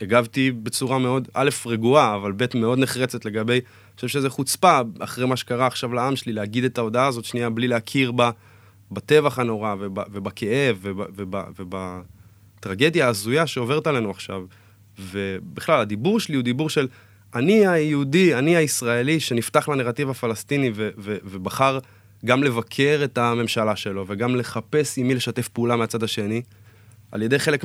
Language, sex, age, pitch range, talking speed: Hebrew, male, 20-39, 110-150 Hz, 145 wpm